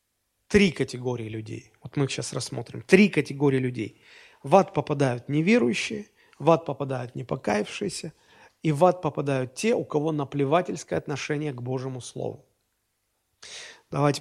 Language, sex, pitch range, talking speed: Russian, male, 135-210 Hz, 135 wpm